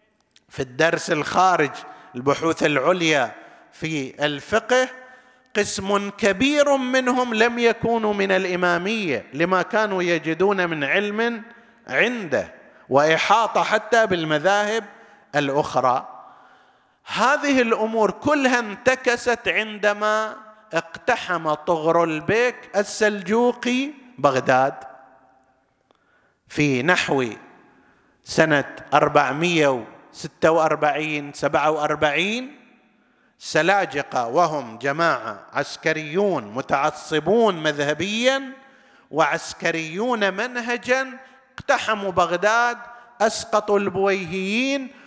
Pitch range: 160-240 Hz